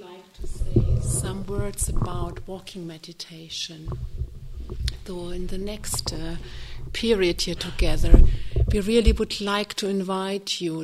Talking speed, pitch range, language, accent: 140 wpm, 180-210 Hz, English, German